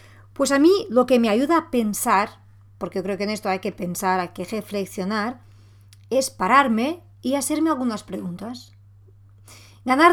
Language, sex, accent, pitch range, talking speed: Spanish, female, Spanish, 185-270 Hz, 165 wpm